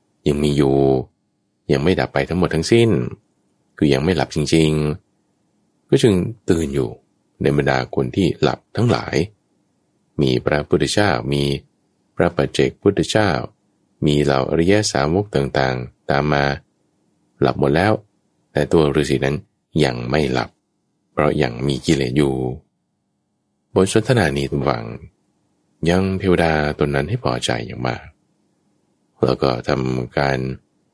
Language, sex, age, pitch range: English, male, 20-39, 65-90 Hz